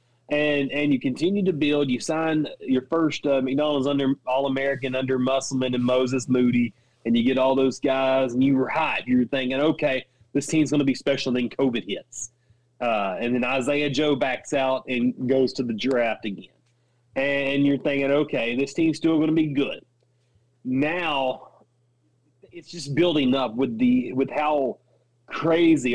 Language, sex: English, male